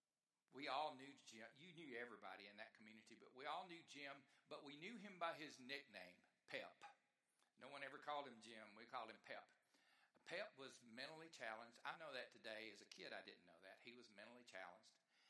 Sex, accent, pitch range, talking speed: male, American, 115-150 Hz, 205 wpm